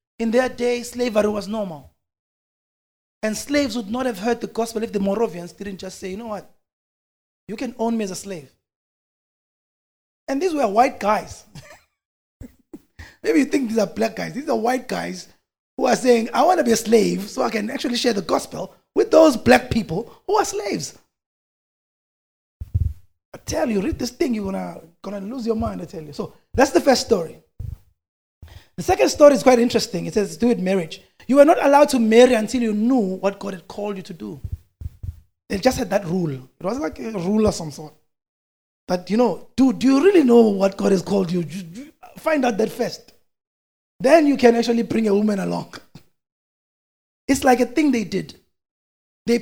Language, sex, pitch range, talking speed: English, male, 190-255 Hz, 195 wpm